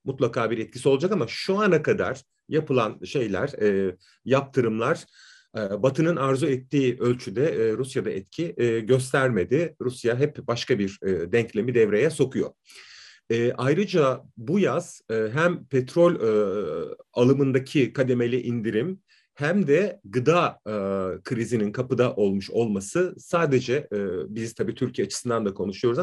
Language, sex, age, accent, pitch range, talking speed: Turkish, male, 40-59, native, 120-165 Hz, 130 wpm